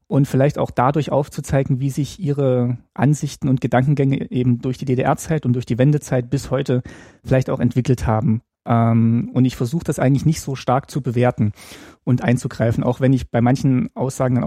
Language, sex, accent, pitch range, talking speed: German, male, German, 120-140 Hz, 185 wpm